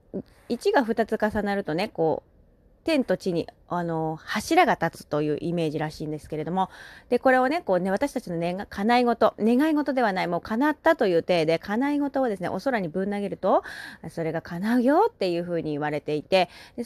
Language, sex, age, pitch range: Japanese, female, 30-49, 170-260 Hz